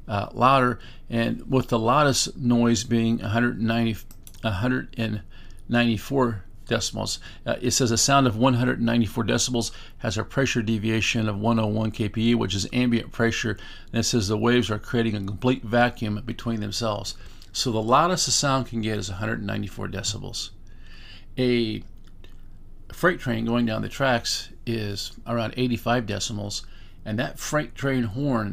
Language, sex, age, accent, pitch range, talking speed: English, male, 50-69, American, 105-125 Hz, 145 wpm